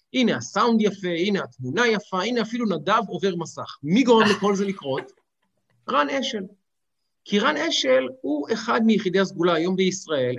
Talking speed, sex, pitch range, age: 155 wpm, male, 165-230 Hz, 50-69